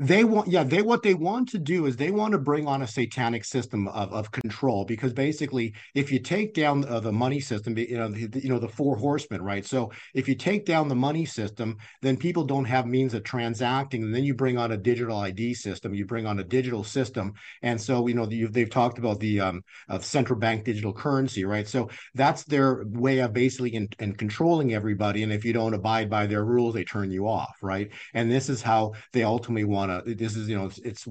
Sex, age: male, 50-69